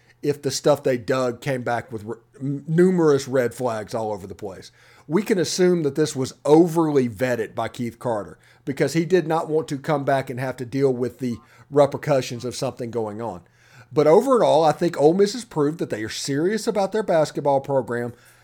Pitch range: 120-165 Hz